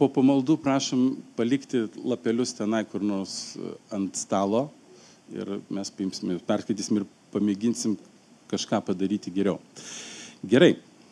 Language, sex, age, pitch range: English, male, 50-69, 115-160 Hz